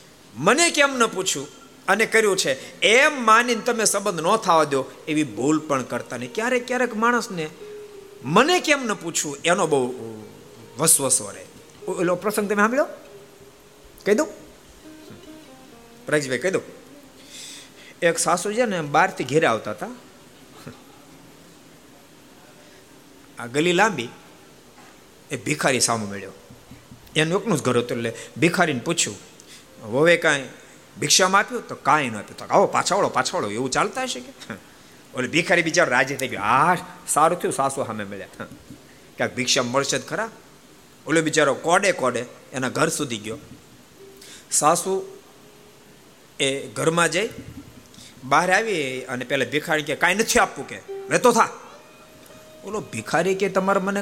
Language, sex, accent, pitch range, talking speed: Gujarati, male, native, 140-225 Hz, 95 wpm